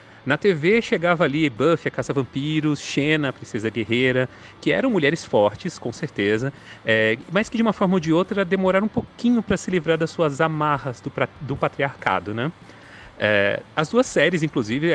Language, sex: Portuguese, male